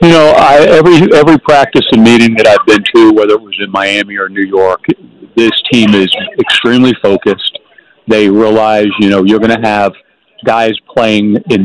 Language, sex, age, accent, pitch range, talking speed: English, male, 50-69, American, 105-130 Hz, 185 wpm